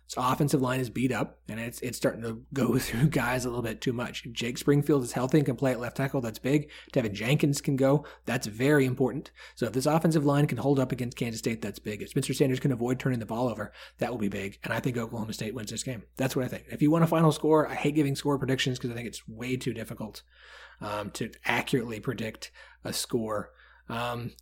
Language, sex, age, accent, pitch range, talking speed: English, male, 30-49, American, 120-140 Hz, 250 wpm